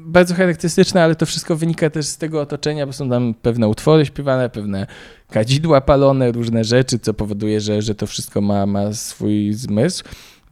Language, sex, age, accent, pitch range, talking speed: Polish, male, 20-39, native, 105-140 Hz, 175 wpm